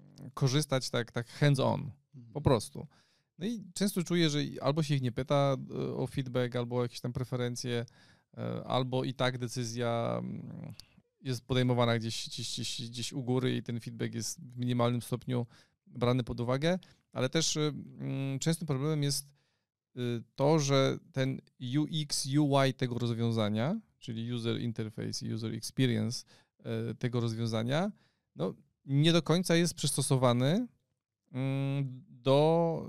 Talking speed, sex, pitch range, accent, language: 130 wpm, male, 120-145 Hz, native, Polish